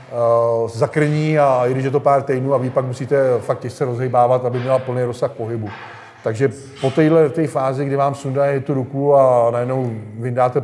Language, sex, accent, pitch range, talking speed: Czech, male, native, 125-135 Hz, 185 wpm